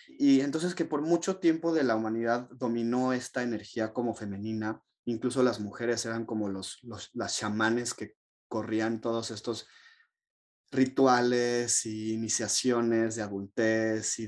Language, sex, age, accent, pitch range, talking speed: Spanish, male, 30-49, Mexican, 110-130 Hz, 140 wpm